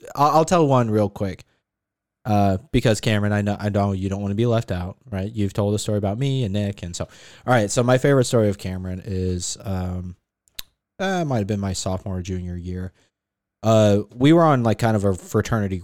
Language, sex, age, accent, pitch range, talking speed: English, male, 20-39, American, 100-120 Hz, 215 wpm